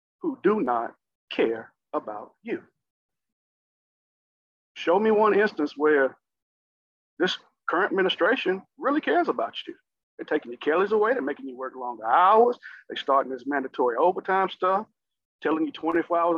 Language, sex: English, male